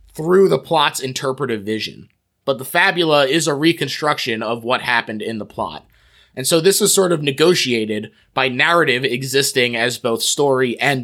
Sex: male